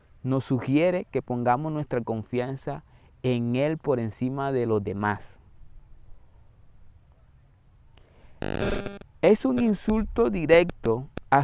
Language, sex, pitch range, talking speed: Spanish, male, 105-155 Hz, 95 wpm